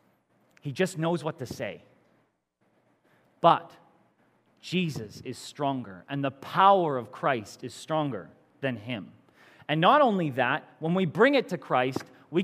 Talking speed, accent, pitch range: 145 wpm, American, 140-200 Hz